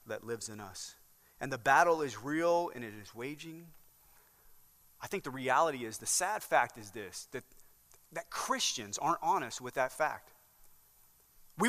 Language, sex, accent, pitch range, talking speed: English, male, American, 130-215 Hz, 165 wpm